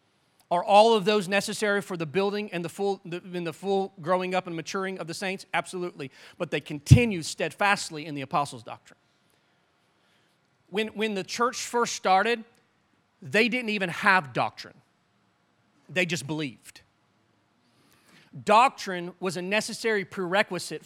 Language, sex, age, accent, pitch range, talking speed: English, male, 40-59, American, 180-220 Hz, 145 wpm